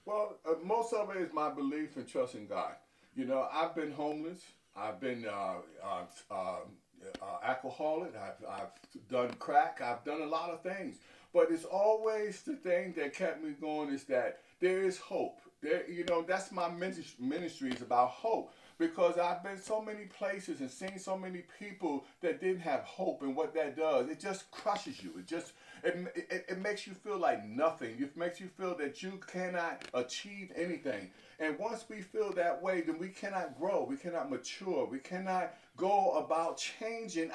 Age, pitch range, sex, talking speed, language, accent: 50-69, 160-210 Hz, male, 190 wpm, English, American